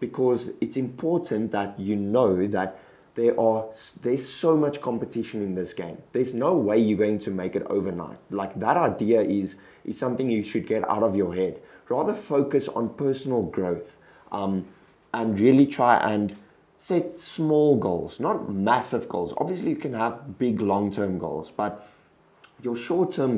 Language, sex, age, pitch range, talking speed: English, male, 20-39, 100-125 Hz, 165 wpm